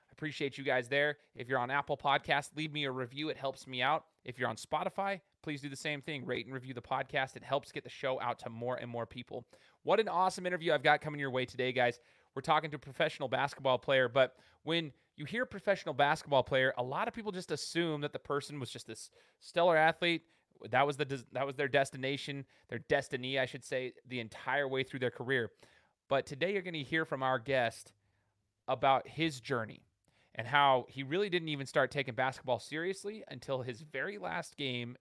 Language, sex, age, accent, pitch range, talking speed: English, male, 30-49, American, 125-155 Hz, 215 wpm